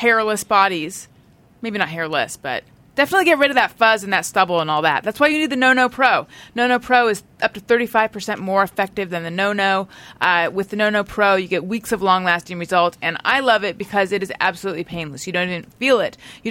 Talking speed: 225 wpm